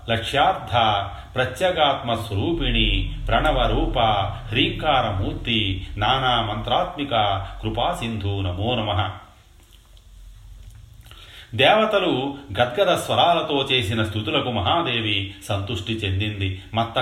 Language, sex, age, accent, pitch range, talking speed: Telugu, male, 40-59, native, 100-120 Hz, 65 wpm